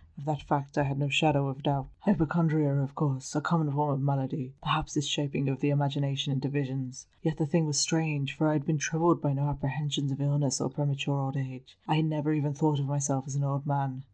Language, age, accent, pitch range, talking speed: English, 20-39, British, 140-155 Hz, 235 wpm